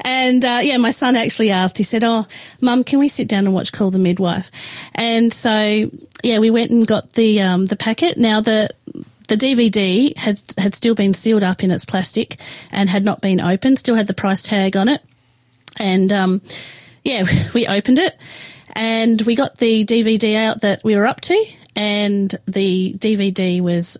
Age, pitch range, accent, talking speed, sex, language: 30-49, 180-220 Hz, Australian, 195 wpm, female, English